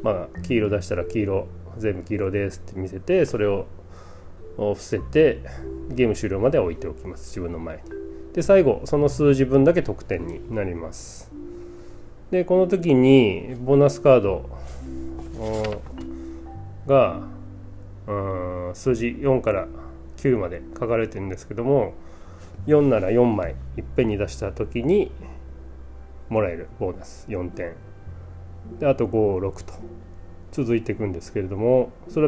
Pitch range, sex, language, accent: 80-115 Hz, male, Japanese, native